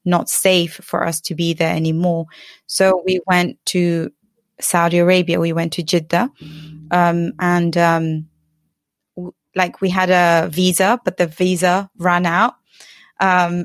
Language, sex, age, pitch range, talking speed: English, female, 20-39, 170-195 Hz, 140 wpm